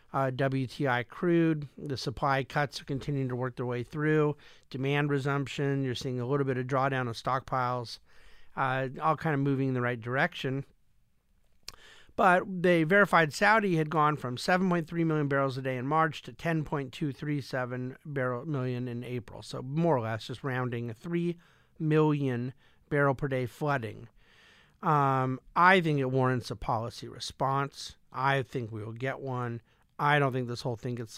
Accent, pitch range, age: American, 125-150 Hz, 50-69